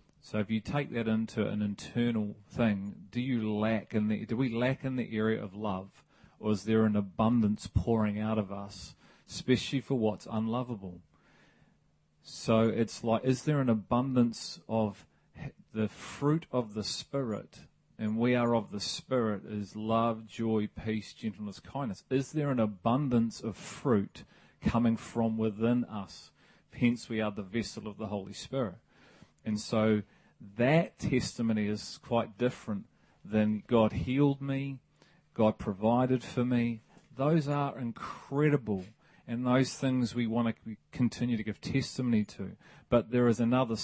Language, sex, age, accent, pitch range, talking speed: English, male, 40-59, Australian, 105-125 Hz, 155 wpm